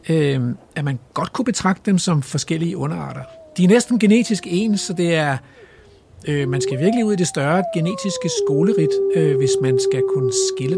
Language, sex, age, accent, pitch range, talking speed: Danish, male, 60-79, native, 130-210 Hz, 190 wpm